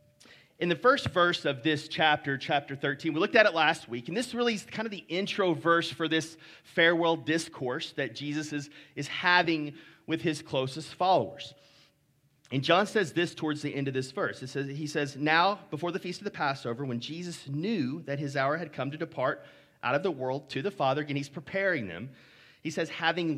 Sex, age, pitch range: male, 30-49, 140-180 Hz